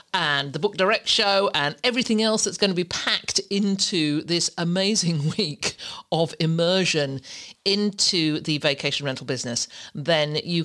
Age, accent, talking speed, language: 50-69, British, 145 wpm, English